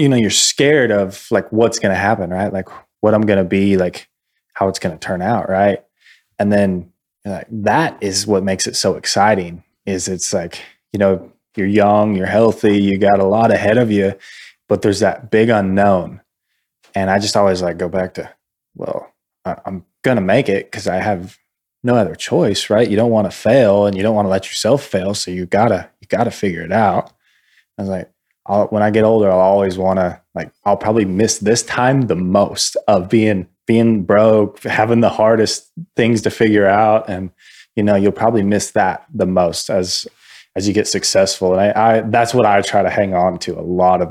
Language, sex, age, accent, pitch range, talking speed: English, male, 20-39, American, 95-110 Hz, 210 wpm